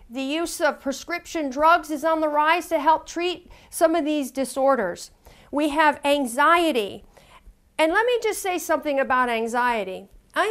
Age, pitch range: 40-59, 265-345 Hz